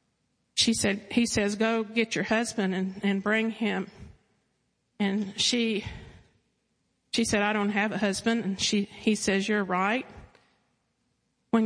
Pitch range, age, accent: 195-215 Hz, 50-69, American